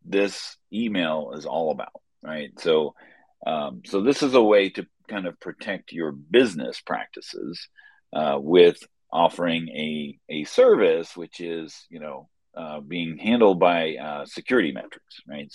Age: 40-59